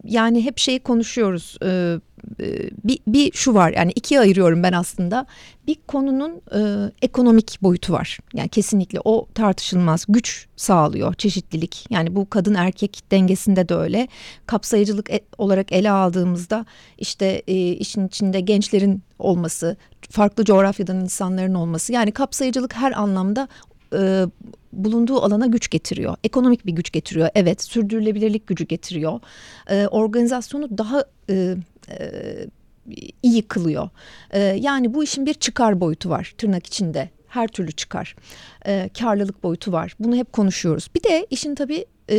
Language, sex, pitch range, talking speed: Turkish, female, 185-245 Hz, 130 wpm